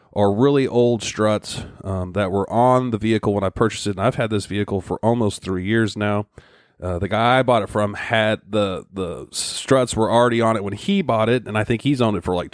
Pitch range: 95-115 Hz